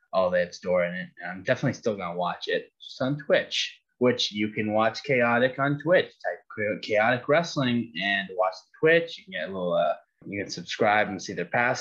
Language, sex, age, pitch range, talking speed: English, male, 10-29, 110-165 Hz, 220 wpm